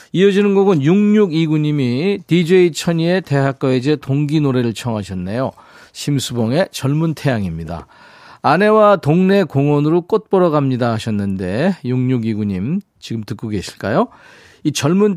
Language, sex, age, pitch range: Korean, male, 40-59, 115-170 Hz